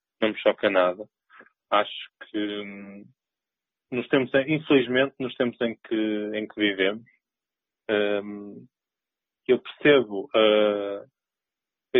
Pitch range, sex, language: 105-130 Hz, male, Portuguese